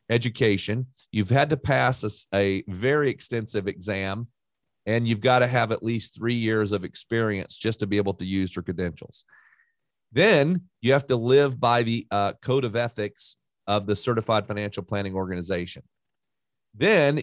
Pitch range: 105-130 Hz